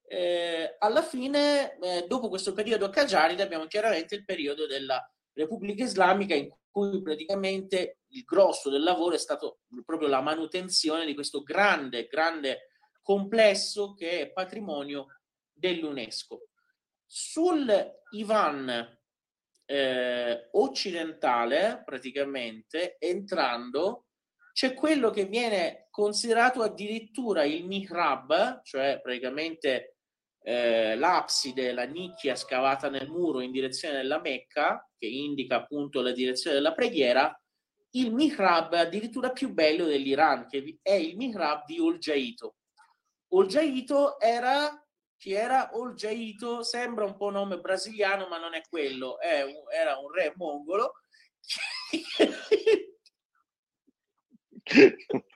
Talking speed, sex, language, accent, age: 110 wpm, male, Italian, native, 30-49